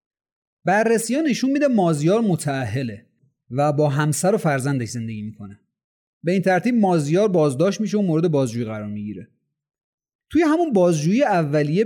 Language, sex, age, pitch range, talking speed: Persian, male, 30-49, 140-210 Hz, 135 wpm